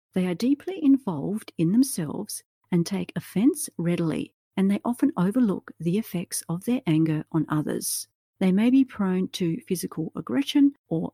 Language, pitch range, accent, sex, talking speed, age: English, 160-240 Hz, Australian, female, 155 wpm, 50-69